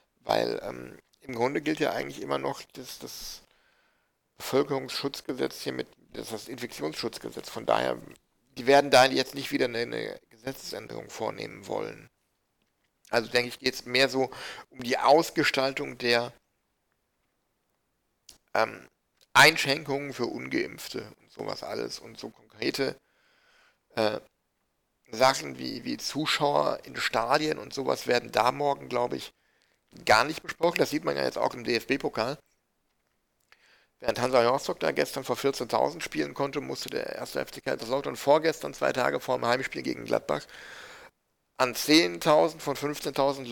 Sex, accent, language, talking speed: male, German, German, 140 wpm